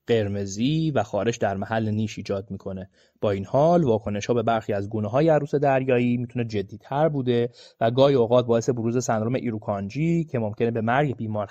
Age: 20-39